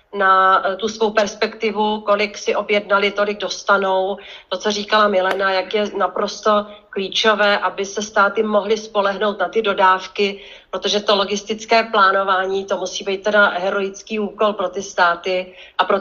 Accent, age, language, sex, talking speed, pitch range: native, 40-59, Czech, female, 150 wpm, 190-220 Hz